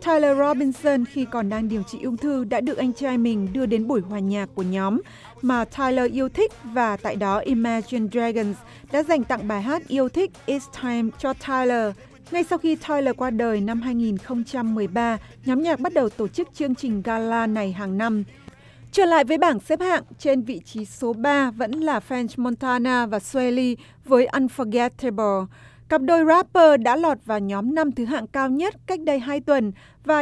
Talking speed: 195 wpm